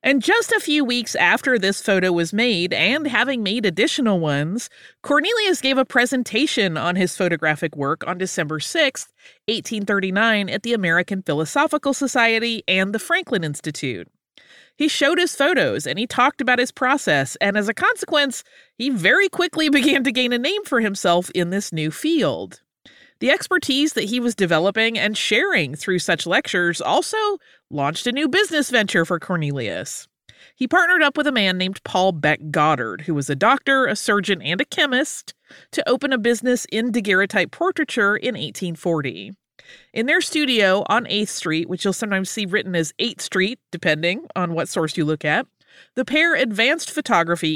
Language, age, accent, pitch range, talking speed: English, 30-49, American, 180-275 Hz, 170 wpm